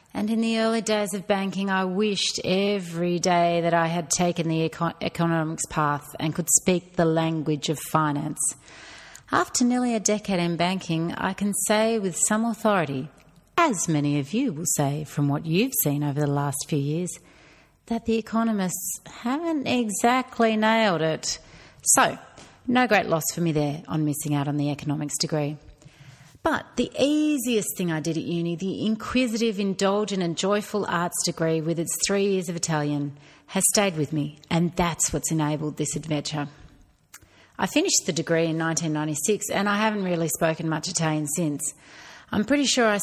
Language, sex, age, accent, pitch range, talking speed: English, female, 30-49, Australian, 155-200 Hz, 170 wpm